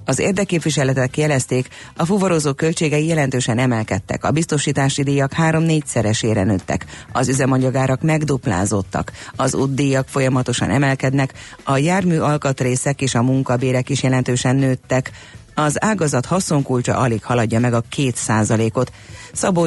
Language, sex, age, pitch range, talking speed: Hungarian, female, 30-49, 115-140 Hz, 120 wpm